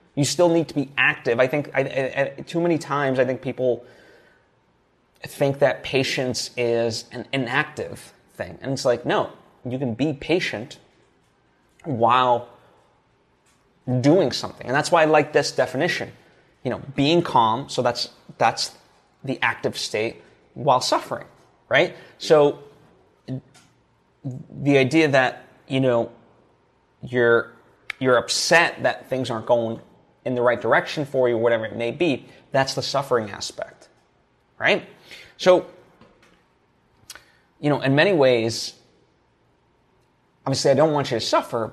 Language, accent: English, American